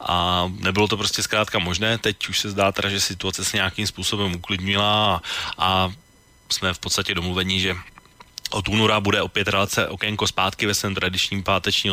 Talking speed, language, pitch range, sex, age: 175 wpm, Slovak, 95-115 Hz, male, 30-49